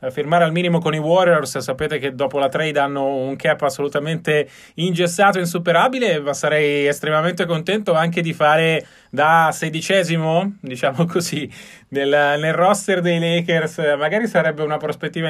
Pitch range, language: 145-175 Hz, Italian